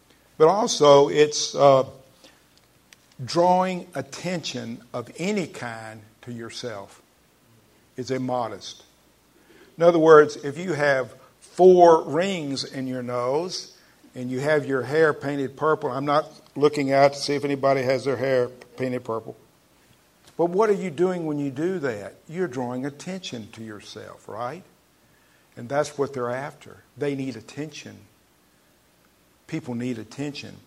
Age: 50-69